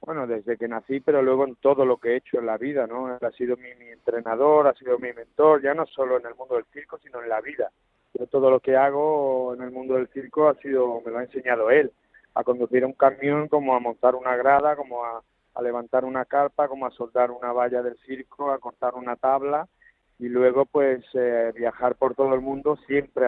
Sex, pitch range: male, 125-140 Hz